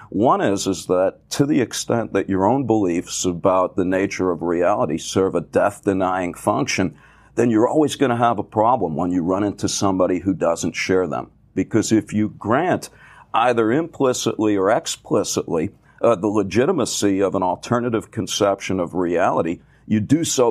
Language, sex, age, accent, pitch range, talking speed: English, male, 50-69, American, 95-120 Hz, 165 wpm